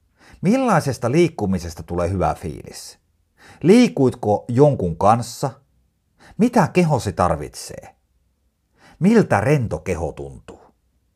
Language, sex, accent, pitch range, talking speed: Finnish, male, native, 85-120 Hz, 80 wpm